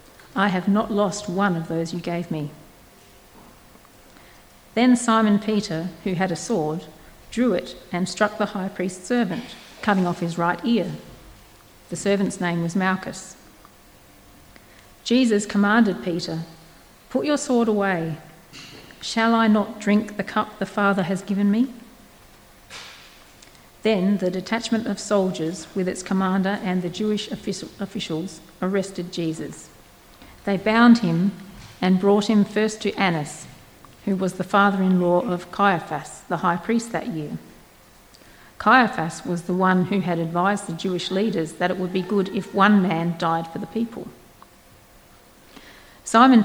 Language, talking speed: English, 140 wpm